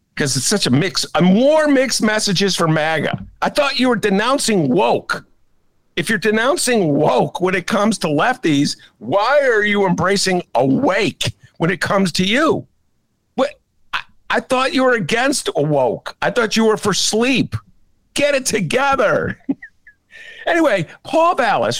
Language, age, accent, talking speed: English, 50-69, American, 150 wpm